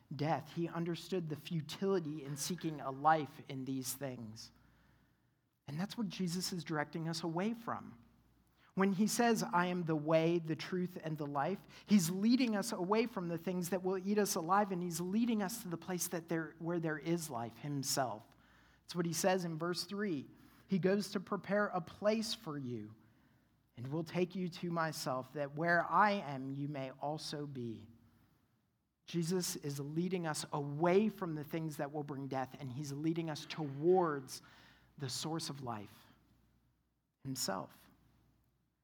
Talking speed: 170 wpm